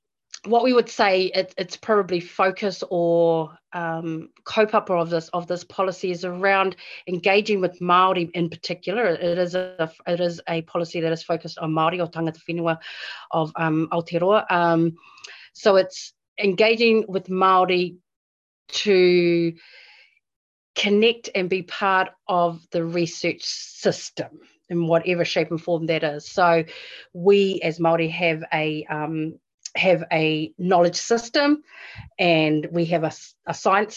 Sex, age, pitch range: female, 30-49, 170-200 Hz